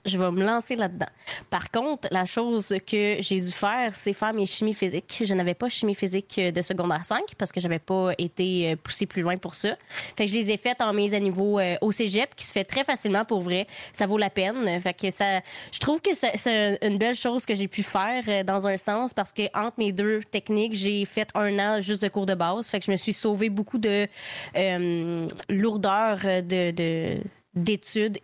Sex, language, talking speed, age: female, French, 225 wpm, 20-39